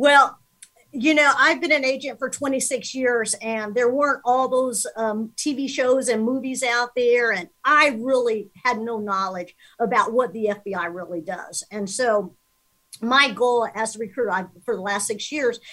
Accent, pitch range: American, 220-265 Hz